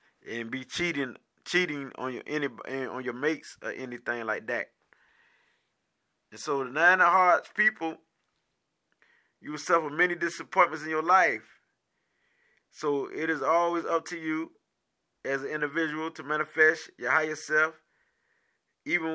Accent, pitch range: American, 140-165 Hz